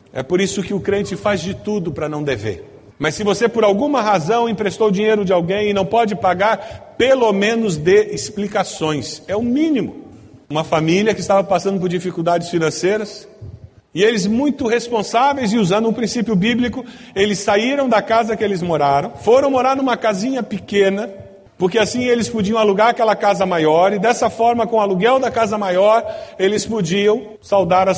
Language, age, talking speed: Portuguese, 40-59, 180 wpm